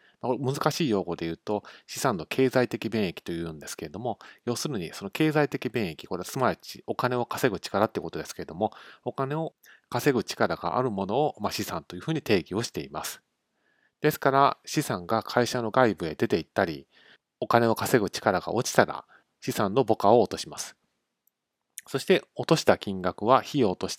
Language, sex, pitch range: Japanese, male, 100-135 Hz